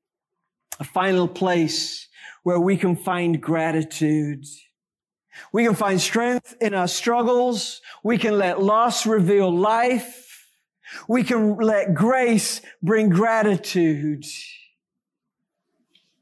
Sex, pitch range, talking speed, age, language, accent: male, 180-260 Hz, 100 wpm, 50-69, English, American